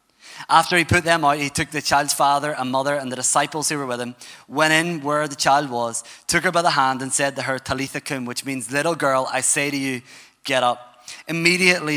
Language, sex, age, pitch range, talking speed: English, male, 20-39, 140-185 Hz, 235 wpm